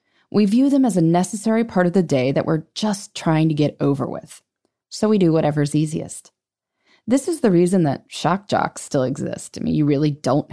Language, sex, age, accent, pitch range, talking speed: English, female, 20-39, American, 150-240 Hz, 210 wpm